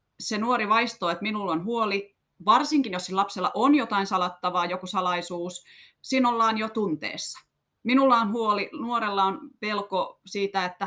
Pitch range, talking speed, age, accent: 170-220 Hz, 150 wpm, 30-49, native